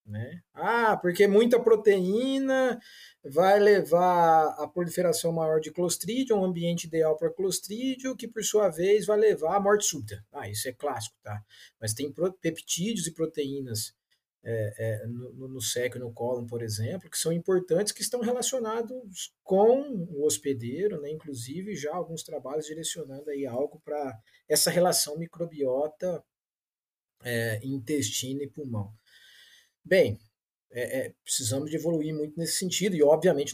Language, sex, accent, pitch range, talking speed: Portuguese, male, Brazilian, 120-180 Hz, 140 wpm